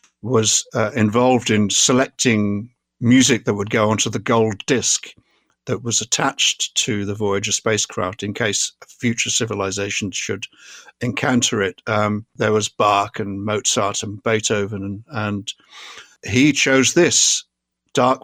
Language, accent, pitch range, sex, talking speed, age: English, British, 105-125 Hz, male, 135 wpm, 60-79